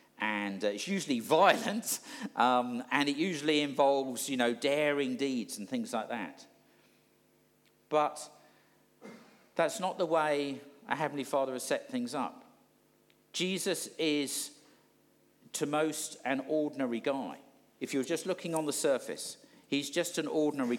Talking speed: 135 wpm